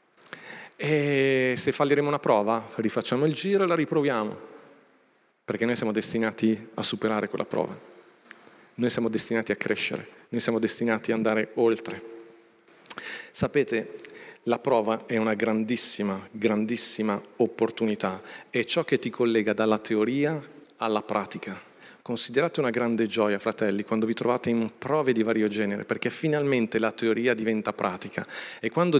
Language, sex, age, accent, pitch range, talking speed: Italian, male, 40-59, native, 110-135 Hz, 140 wpm